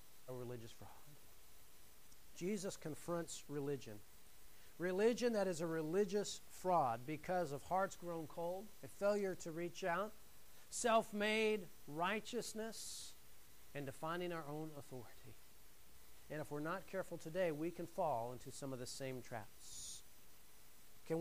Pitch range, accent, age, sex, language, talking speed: 150-230 Hz, American, 50-69, male, English, 125 wpm